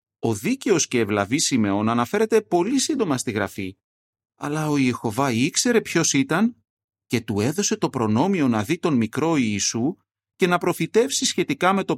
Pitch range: 105-160 Hz